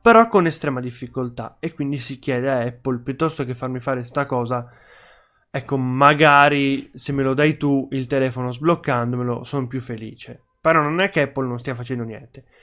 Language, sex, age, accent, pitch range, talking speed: Italian, male, 20-39, native, 130-170 Hz, 180 wpm